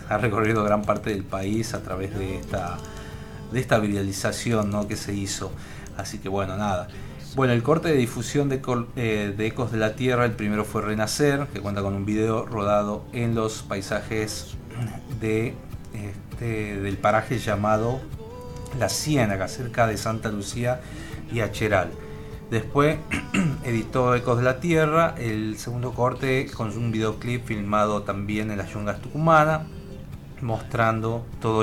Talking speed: 150 wpm